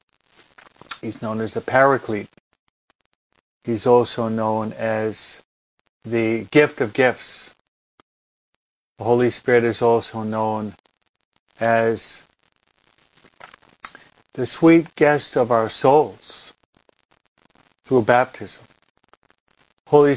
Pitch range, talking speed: 115-150 Hz, 85 wpm